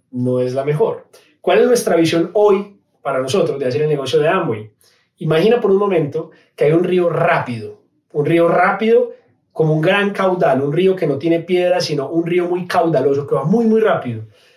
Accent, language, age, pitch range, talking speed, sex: Colombian, Spanish, 30-49, 150-200 Hz, 200 wpm, male